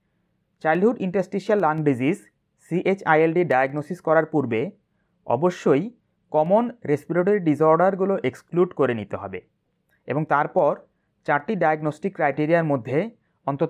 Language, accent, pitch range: Bengali, native, 140-195 Hz